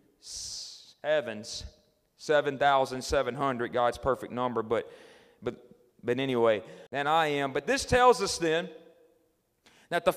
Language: English